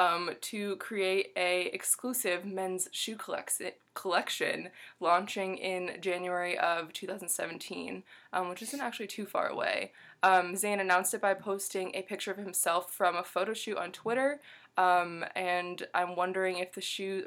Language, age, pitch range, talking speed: English, 20-39, 180-210 Hz, 155 wpm